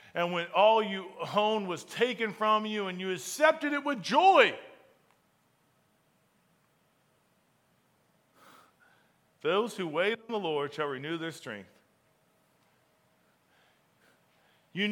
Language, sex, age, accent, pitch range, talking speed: English, male, 40-59, American, 150-200 Hz, 105 wpm